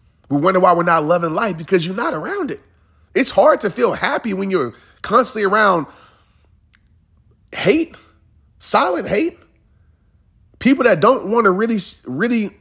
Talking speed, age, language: 150 wpm, 30-49, English